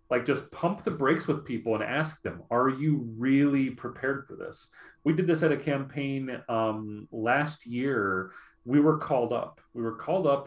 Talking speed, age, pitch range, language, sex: 190 wpm, 30-49, 110-145 Hz, English, male